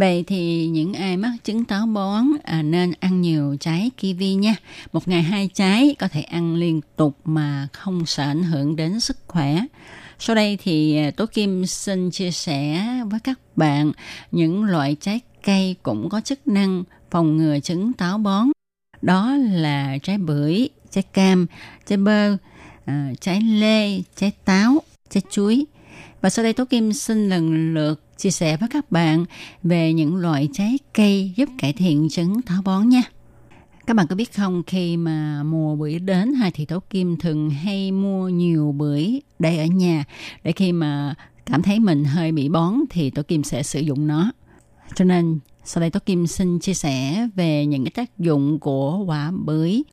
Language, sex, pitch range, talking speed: Vietnamese, female, 155-205 Hz, 180 wpm